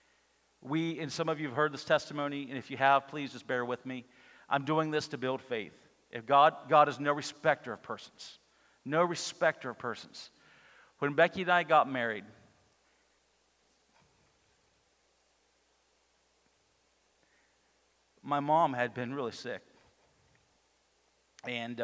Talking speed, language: 135 wpm, English